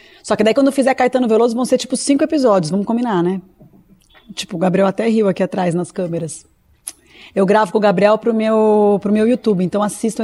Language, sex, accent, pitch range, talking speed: Portuguese, female, Brazilian, 185-240 Hz, 215 wpm